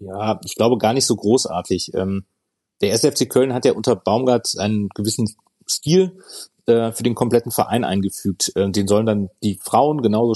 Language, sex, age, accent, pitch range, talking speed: German, male, 30-49, German, 100-120 Hz, 160 wpm